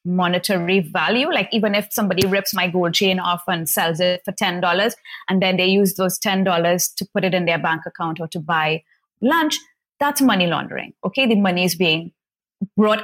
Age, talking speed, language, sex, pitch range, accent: 30-49, 195 wpm, English, female, 180-280 Hz, Indian